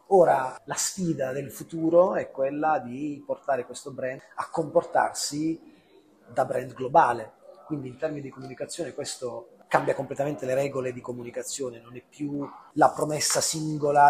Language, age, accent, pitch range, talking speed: Italian, 30-49, native, 135-170 Hz, 145 wpm